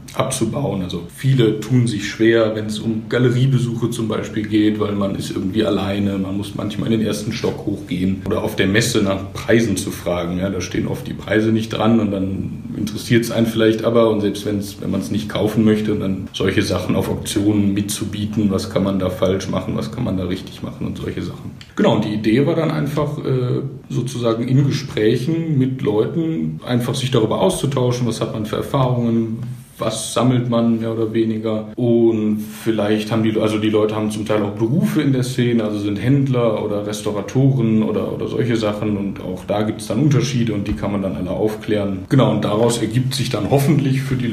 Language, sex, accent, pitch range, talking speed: German, male, German, 105-120 Hz, 205 wpm